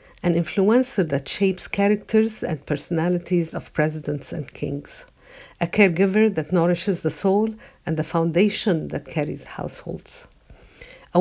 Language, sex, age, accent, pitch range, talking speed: English, female, 50-69, Italian, 160-190 Hz, 130 wpm